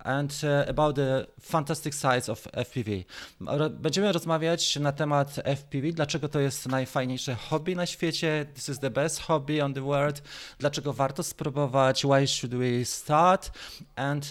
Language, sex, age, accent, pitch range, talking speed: Polish, male, 30-49, native, 125-155 Hz, 155 wpm